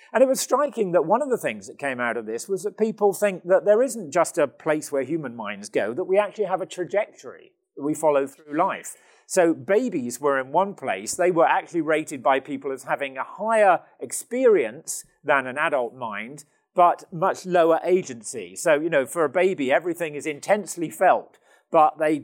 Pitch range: 150-205 Hz